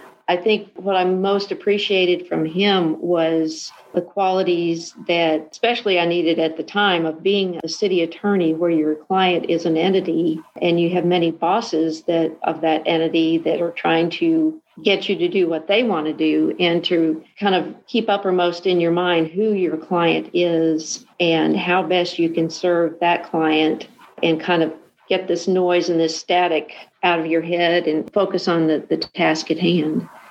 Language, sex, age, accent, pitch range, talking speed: English, female, 50-69, American, 165-190 Hz, 185 wpm